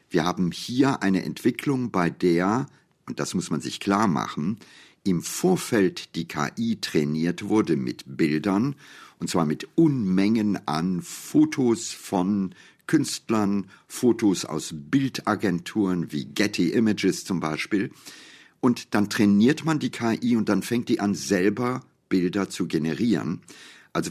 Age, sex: 50-69, male